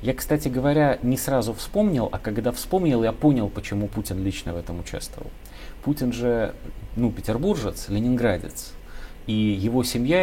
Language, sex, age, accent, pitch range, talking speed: Russian, male, 30-49, native, 100-130 Hz, 145 wpm